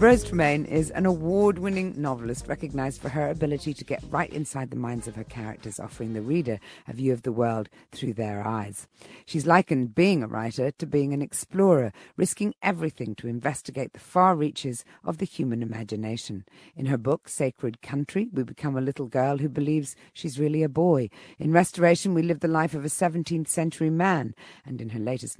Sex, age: female, 50-69